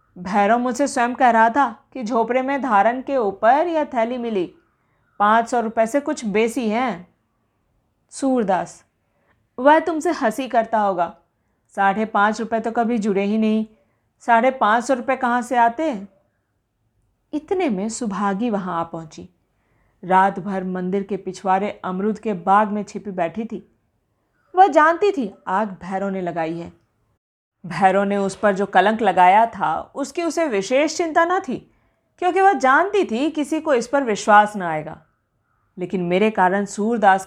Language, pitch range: Hindi, 185-255 Hz